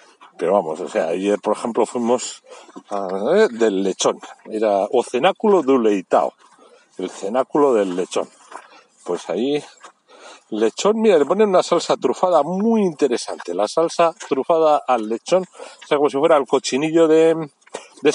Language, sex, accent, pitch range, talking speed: Spanish, male, Spanish, 135-190 Hz, 150 wpm